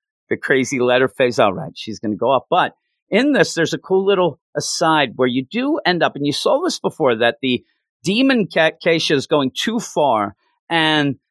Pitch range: 125-180 Hz